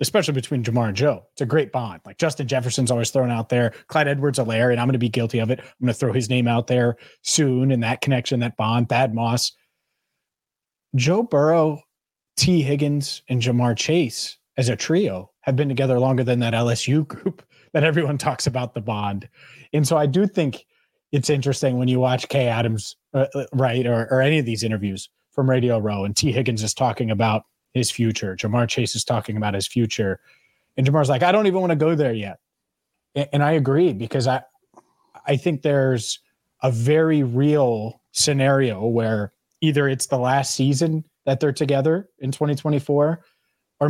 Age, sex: 30-49, male